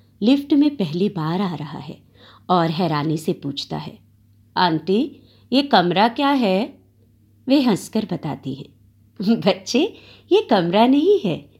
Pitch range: 140-230 Hz